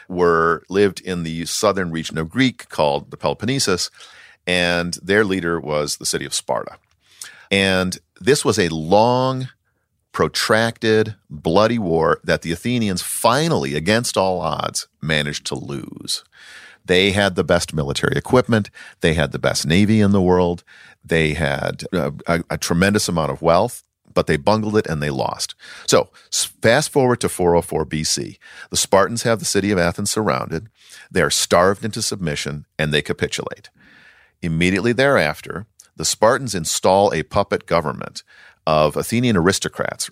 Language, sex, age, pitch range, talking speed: English, male, 40-59, 80-105 Hz, 150 wpm